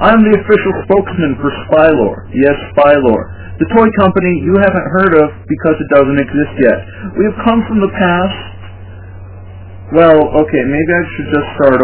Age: 50-69